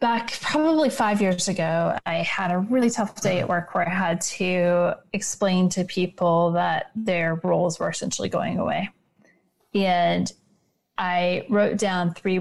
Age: 30-49